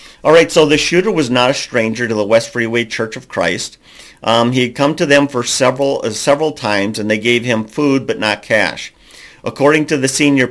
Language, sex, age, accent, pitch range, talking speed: English, male, 50-69, American, 110-135 Hz, 225 wpm